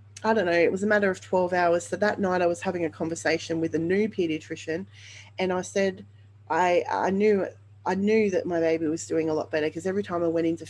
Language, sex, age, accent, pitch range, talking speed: English, female, 20-39, Australian, 150-195 Hz, 250 wpm